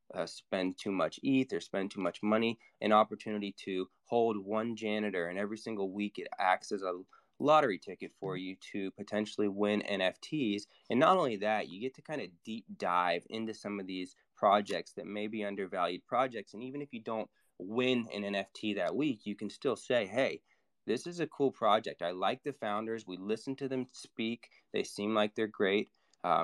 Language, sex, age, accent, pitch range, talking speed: English, male, 20-39, American, 95-110 Hz, 200 wpm